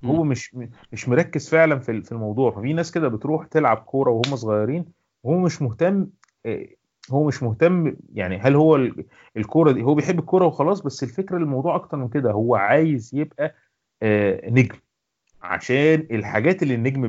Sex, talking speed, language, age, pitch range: male, 155 wpm, Arabic, 30-49, 110-155 Hz